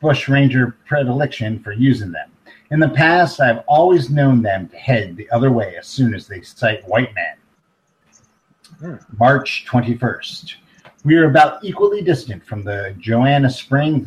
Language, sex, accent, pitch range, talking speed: English, male, American, 110-140 Hz, 155 wpm